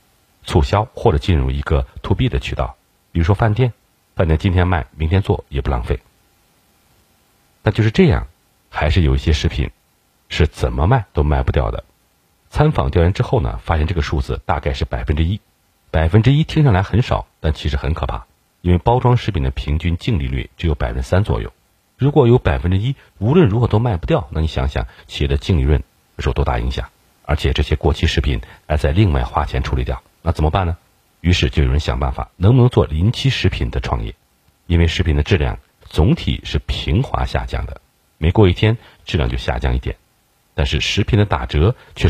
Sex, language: male, Chinese